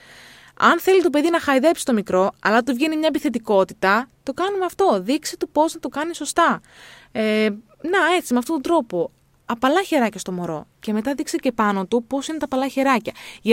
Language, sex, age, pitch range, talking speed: Greek, female, 20-39, 210-295 Hz, 200 wpm